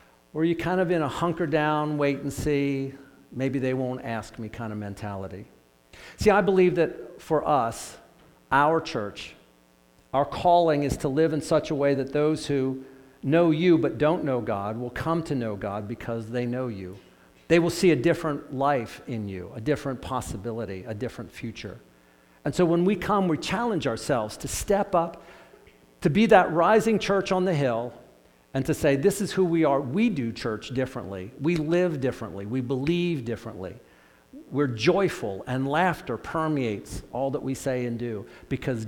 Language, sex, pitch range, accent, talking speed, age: English, male, 110-160 Hz, American, 180 wpm, 50-69